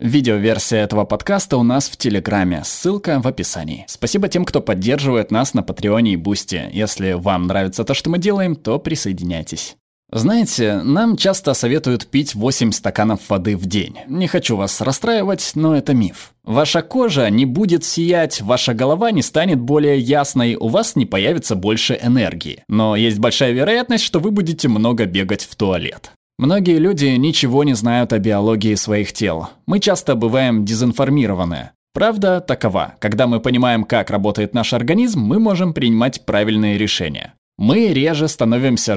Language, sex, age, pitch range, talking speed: Russian, male, 20-39, 105-155 Hz, 160 wpm